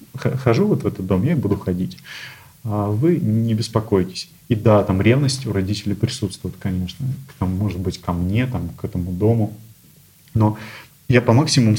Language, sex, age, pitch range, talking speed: Russian, male, 30-49, 100-120 Hz, 165 wpm